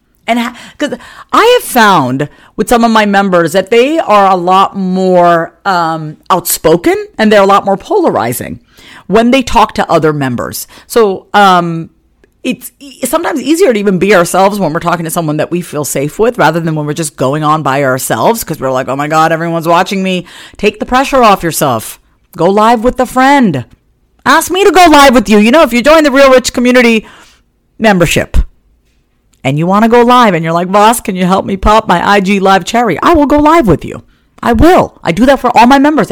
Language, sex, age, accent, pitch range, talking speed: English, female, 50-69, American, 145-235 Hz, 215 wpm